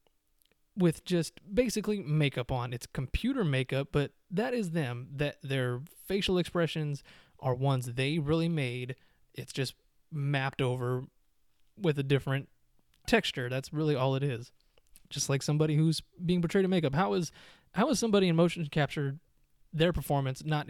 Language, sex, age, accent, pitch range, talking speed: English, male, 20-39, American, 125-155 Hz, 155 wpm